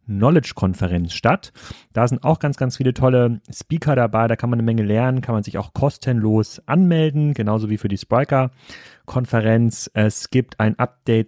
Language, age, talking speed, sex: German, 30-49, 170 wpm, male